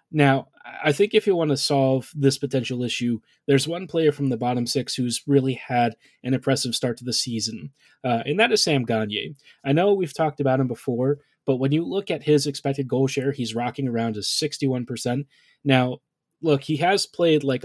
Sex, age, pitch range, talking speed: male, 20-39, 125-145 Hz, 205 wpm